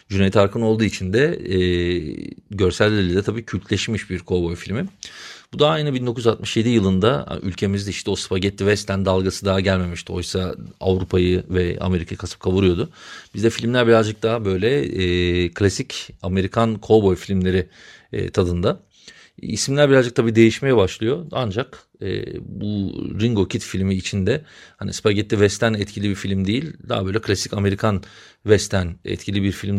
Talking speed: 140 wpm